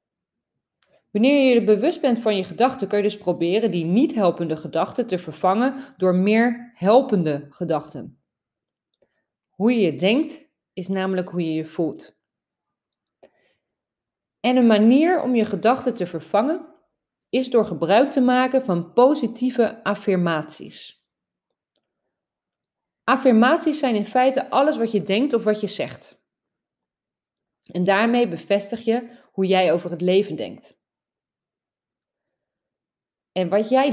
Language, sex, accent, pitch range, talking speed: Dutch, female, Dutch, 180-250 Hz, 130 wpm